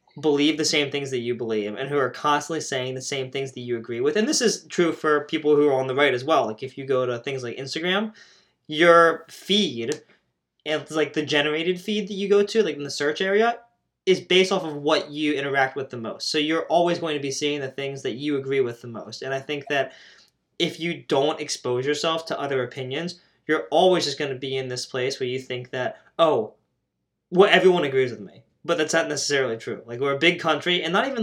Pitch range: 135-170 Hz